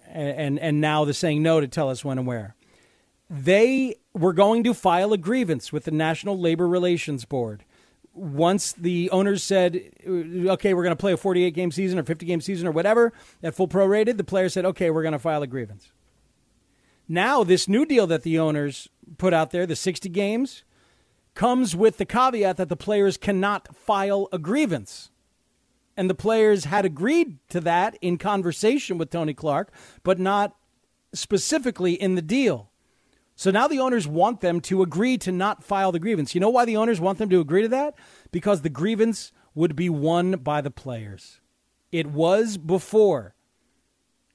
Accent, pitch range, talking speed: American, 165-205 Hz, 185 wpm